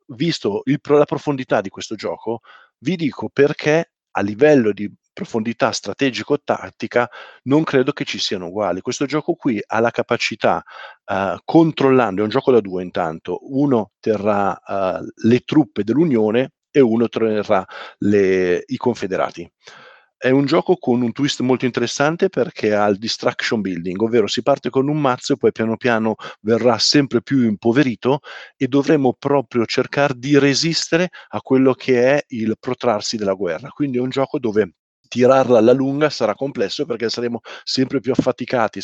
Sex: male